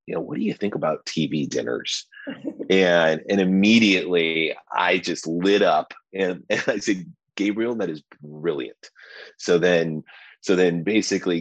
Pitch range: 75-100 Hz